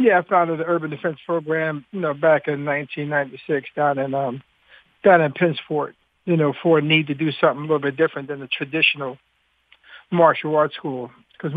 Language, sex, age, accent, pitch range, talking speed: English, male, 50-69, American, 145-160 Hz, 185 wpm